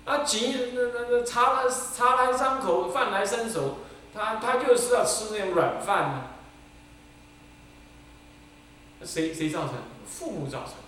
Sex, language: male, Chinese